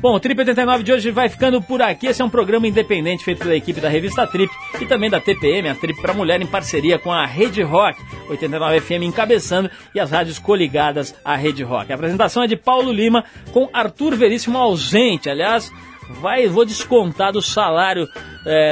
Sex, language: male, Portuguese